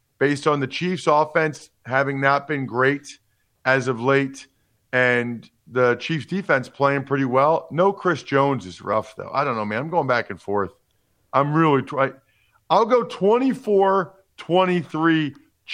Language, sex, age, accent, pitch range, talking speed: English, male, 40-59, American, 120-180 Hz, 155 wpm